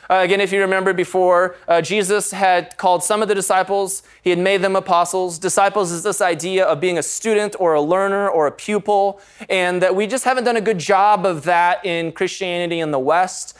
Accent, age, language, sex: American, 20-39, English, male